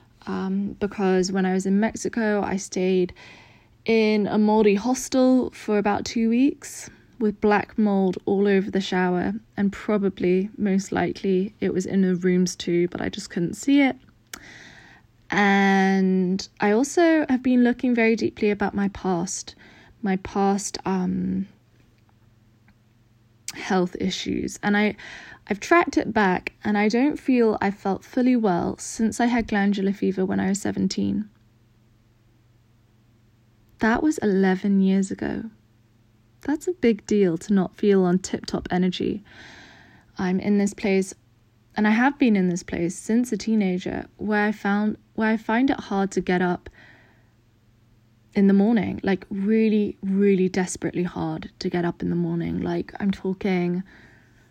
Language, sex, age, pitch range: English, female, 20-39, 125-210 Hz